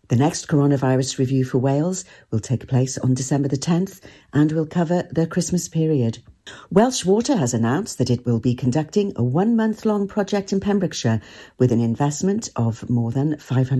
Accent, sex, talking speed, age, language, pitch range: British, female, 170 wpm, 50-69, English, 125-175 Hz